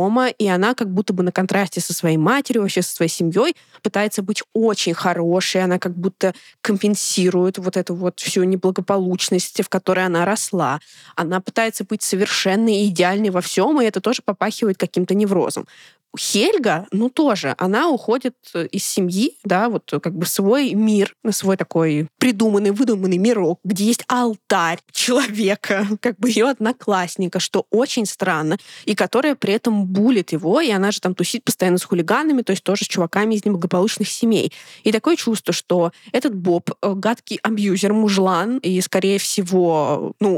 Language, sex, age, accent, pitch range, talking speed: Russian, female, 20-39, native, 180-225 Hz, 160 wpm